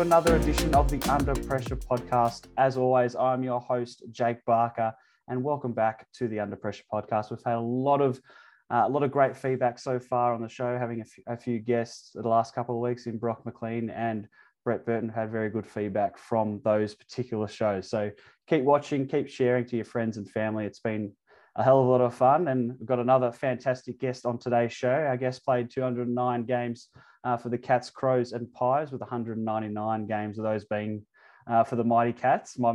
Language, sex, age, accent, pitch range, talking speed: English, male, 20-39, Australian, 115-130 Hz, 205 wpm